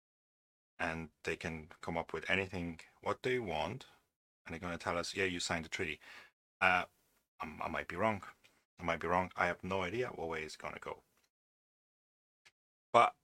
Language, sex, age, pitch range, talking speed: English, male, 40-59, 80-100 Hz, 190 wpm